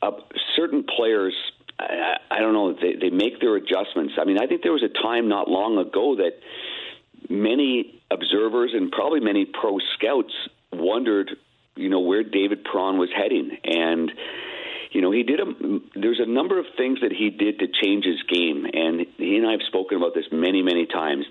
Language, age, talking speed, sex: English, 50-69, 190 wpm, male